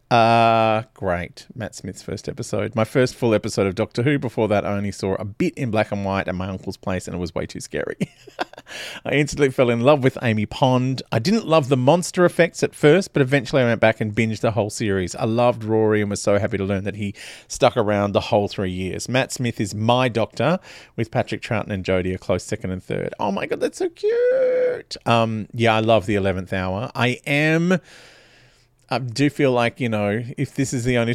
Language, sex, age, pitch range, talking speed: English, male, 30-49, 110-150 Hz, 230 wpm